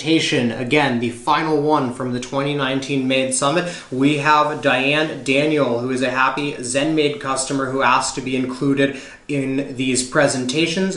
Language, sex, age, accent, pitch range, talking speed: English, male, 20-39, American, 135-160 Hz, 155 wpm